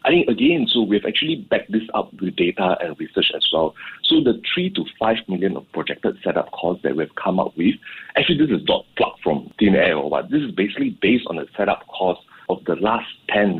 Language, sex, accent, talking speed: English, male, Malaysian, 225 wpm